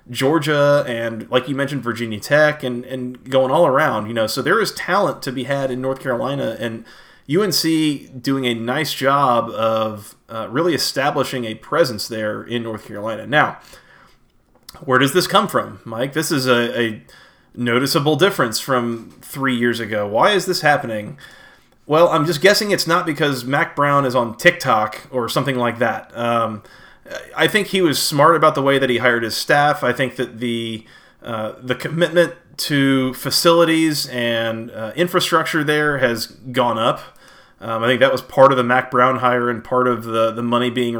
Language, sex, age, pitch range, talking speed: English, male, 30-49, 120-150 Hz, 185 wpm